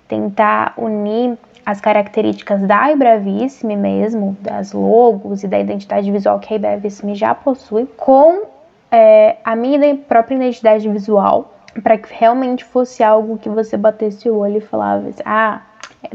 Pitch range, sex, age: 205-235 Hz, female, 10-29